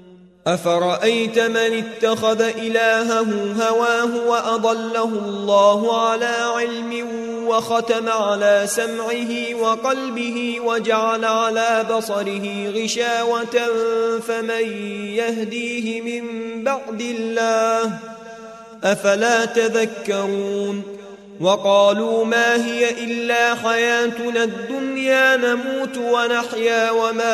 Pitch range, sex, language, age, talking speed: 210-235 Hz, male, Arabic, 20-39, 70 wpm